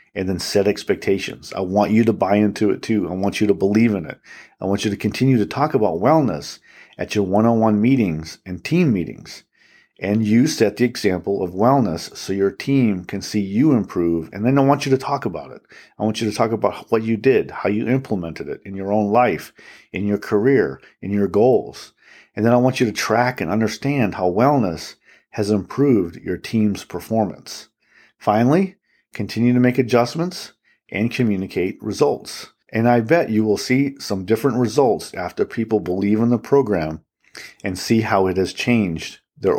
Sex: male